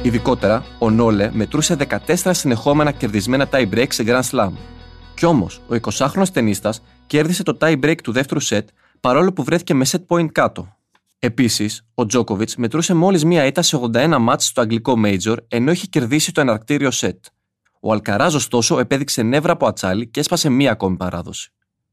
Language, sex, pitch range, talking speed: Greek, male, 115-160 Hz, 165 wpm